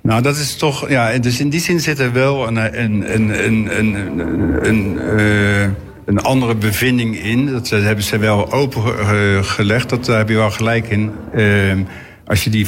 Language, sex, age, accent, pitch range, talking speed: Dutch, male, 60-79, Dutch, 105-130 Hz, 175 wpm